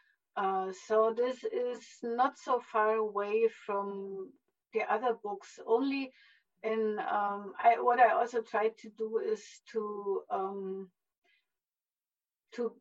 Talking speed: 115 wpm